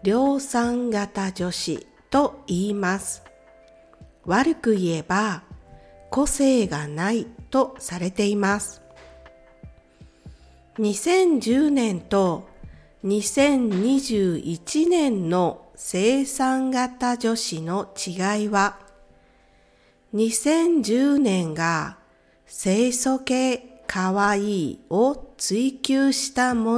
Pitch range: 170-255 Hz